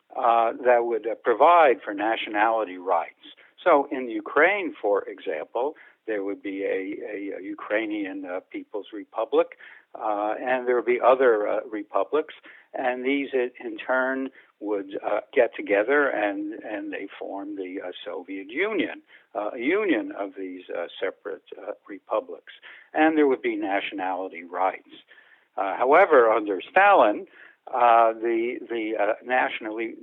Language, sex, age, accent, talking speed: English, male, 60-79, American, 140 wpm